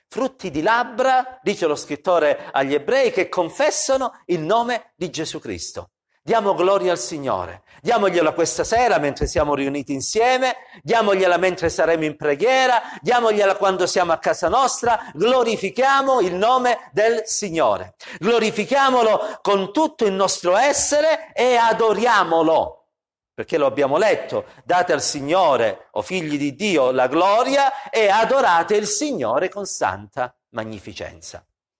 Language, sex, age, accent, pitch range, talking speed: Italian, male, 50-69, native, 160-245 Hz, 130 wpm